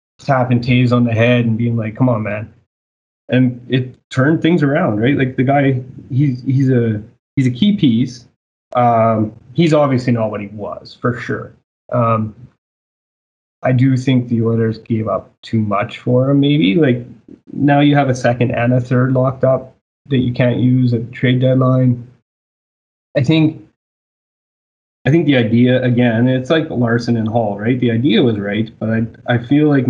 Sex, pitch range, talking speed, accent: male, 115-130 Hz, 180 wpm, American